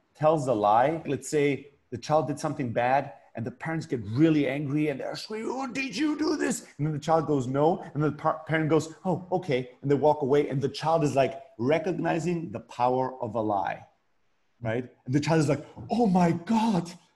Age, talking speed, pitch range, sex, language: 30-49, 210 wpm, 135-185 Hz, male, English